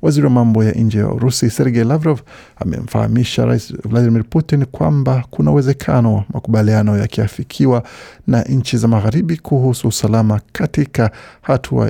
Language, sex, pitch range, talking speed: Swahili, male, 110-130 Hz, 120 wpm